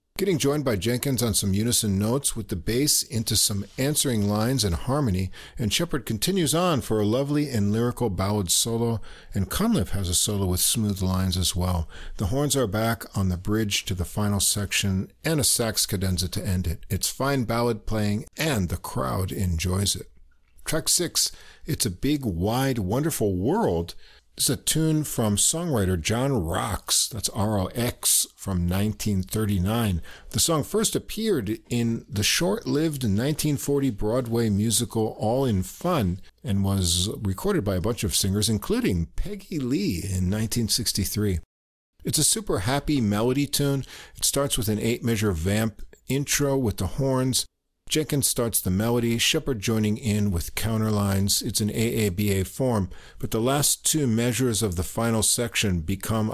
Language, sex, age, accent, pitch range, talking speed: English, male, 50-69, American, 95-125 Hz, 160 wpm